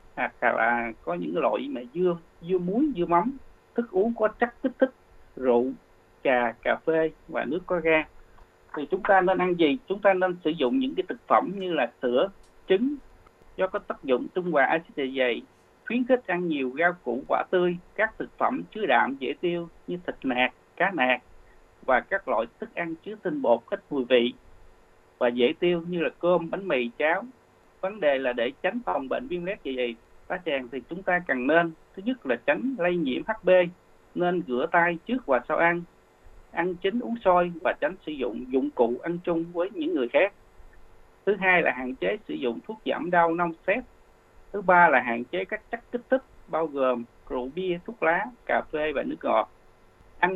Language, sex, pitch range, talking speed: Vietnamese, male, 130-195 Hz, 205 wpm